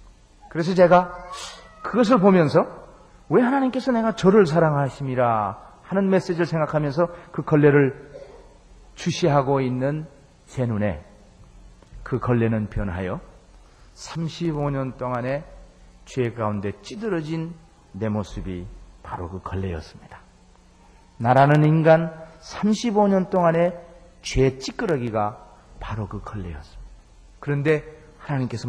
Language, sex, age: Korean, male, 40-59